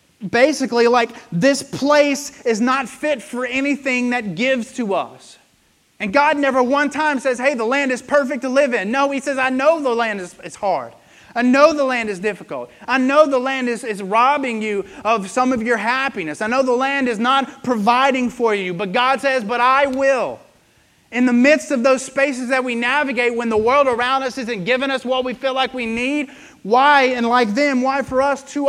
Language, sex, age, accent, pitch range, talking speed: English, male, 30-49, American, 215-270 Hz, 215 wpm